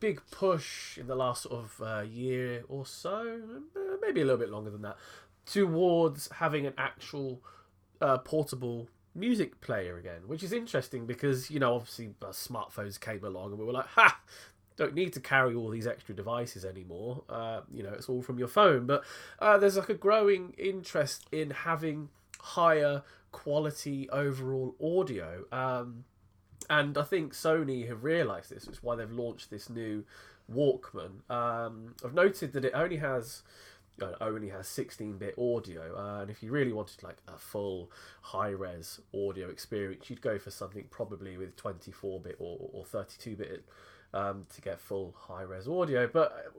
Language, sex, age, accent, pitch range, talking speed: English, male, 20-39, British, 100-150 Hz, 165 wpm